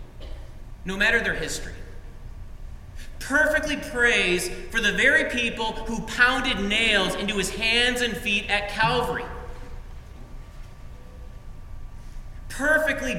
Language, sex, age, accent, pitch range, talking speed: English, male, 30-49, American, 180-245 Hz, 95 wpm